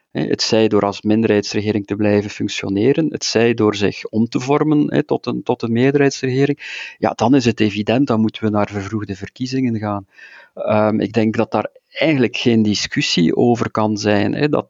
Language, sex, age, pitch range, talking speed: Dutch, male, 50-69, 105-135 Hz, 190 wpm